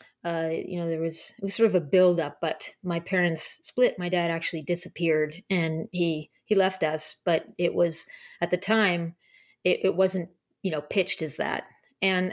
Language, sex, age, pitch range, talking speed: English, female, 30-49, 165-185 Hz, 190 wpm